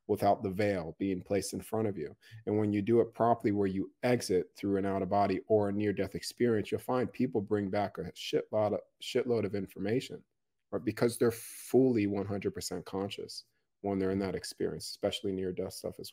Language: English